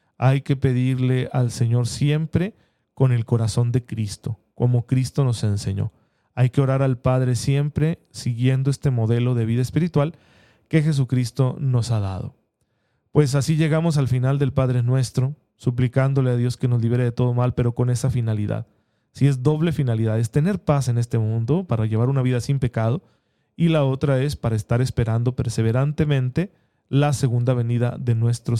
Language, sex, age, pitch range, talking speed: Spanish, male, 40-59, 115-140 Hz, 170 wpm